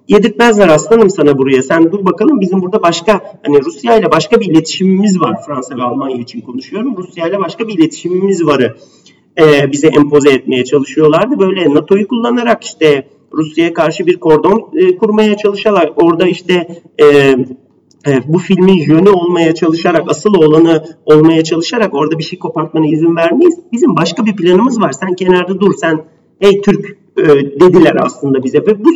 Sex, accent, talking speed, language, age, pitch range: male, native, 165 wpm, Turkish, 40-59, 155-215 Hz